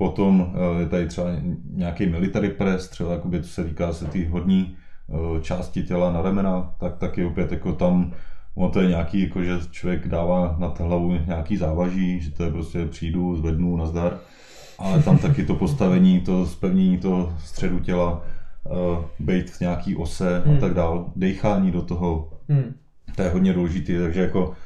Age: 20-39